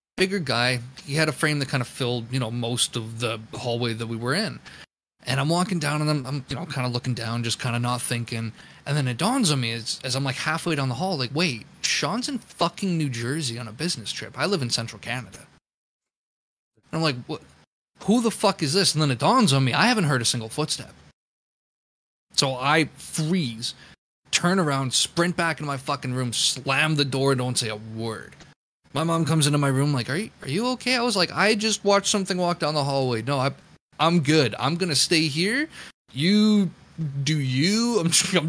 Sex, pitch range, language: male, 120-165 Hz, English